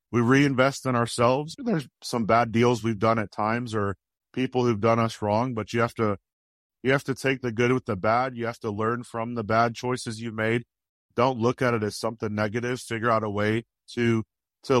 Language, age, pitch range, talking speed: English, 40-59, 110-125 Hz, 220 wpm